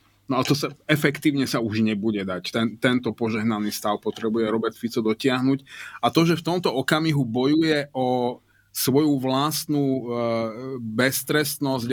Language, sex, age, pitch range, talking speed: Slovak, male, 30-49, 120-140 Hz, 145 wpm